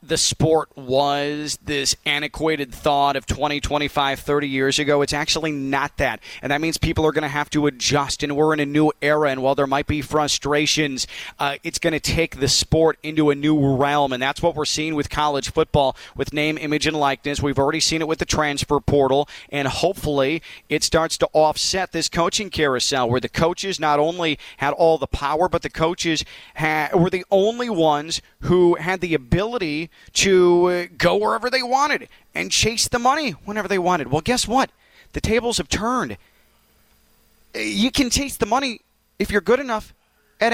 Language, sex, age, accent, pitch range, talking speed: English, male, 30-49, American, 145-190 Hz, 190 wpm